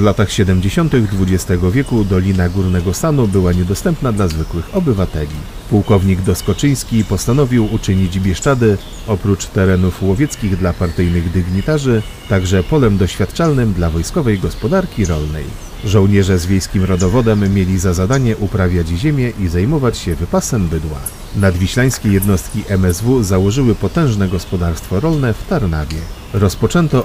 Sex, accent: male, native